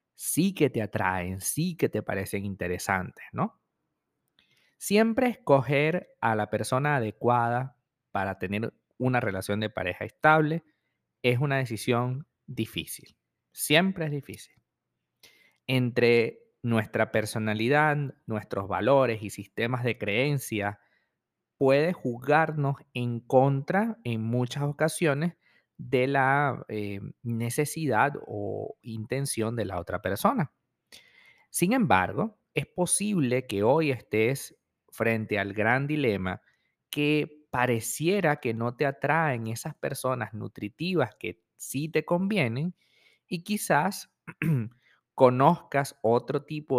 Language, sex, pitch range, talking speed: Spanish, male, 110-150 Hz, 110 wpm